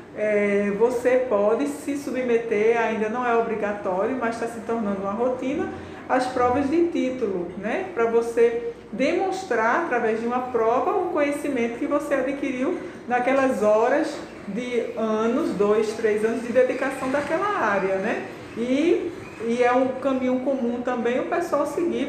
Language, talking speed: Portuguese, 150 wpm